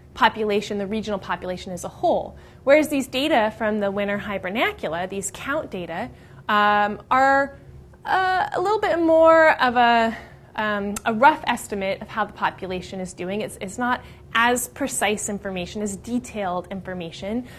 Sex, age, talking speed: female, 20-39, 150 wpm